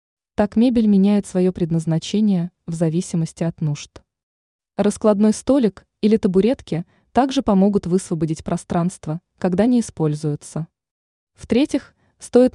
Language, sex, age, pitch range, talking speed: Russian, female, 20-39, 170-215 Hz, 105 wpm